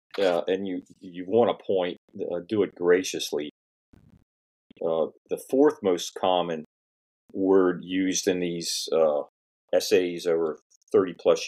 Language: English